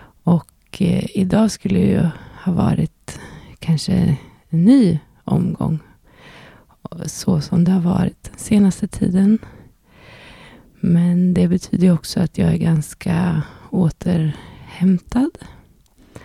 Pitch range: 175-205 Hz